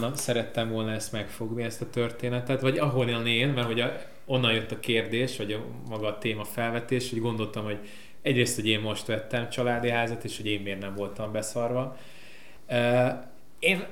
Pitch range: 105-125 Hz